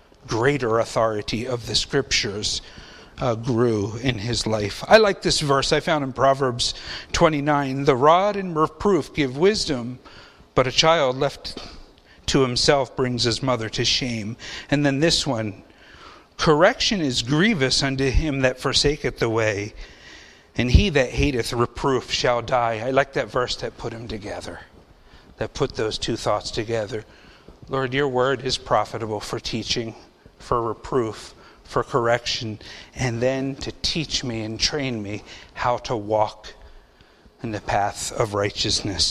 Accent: American